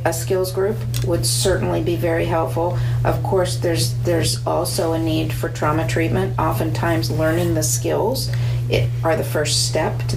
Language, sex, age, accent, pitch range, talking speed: English, female, 40-59, American, 120-130 Hz, 165 wpm